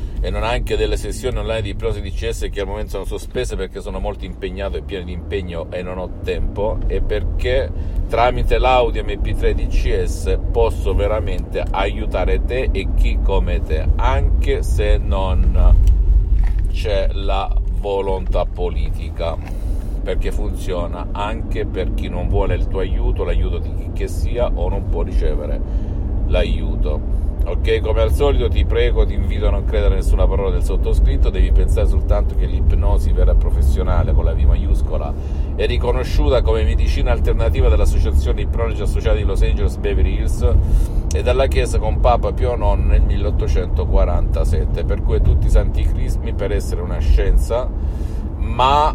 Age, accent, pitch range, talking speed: 50-69, native, 75-95 Hz, 160 wpm